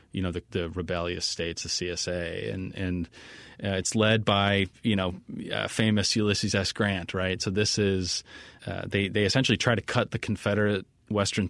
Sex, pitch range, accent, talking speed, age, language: male, 90-105 Hz, American, 185 wpm, 30-49, English